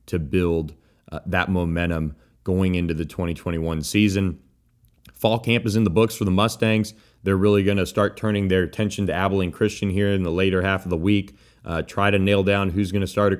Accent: American